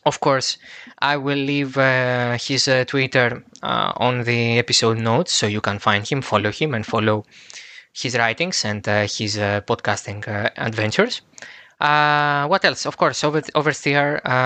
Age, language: 20-39, Greek